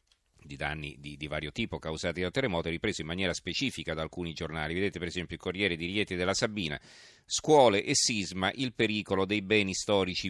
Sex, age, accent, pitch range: male, 40-59, native, 85-105 Hz